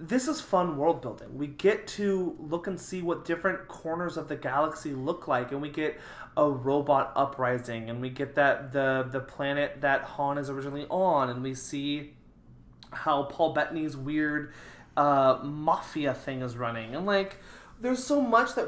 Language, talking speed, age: English, 175 wpm, 20-39